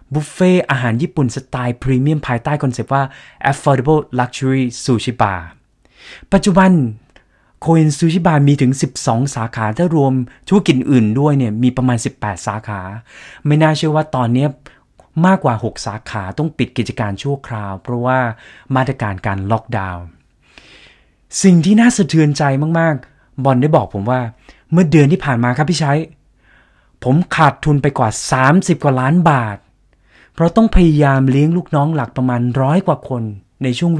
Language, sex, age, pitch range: Thai, male, 20-39, 120-155 Hz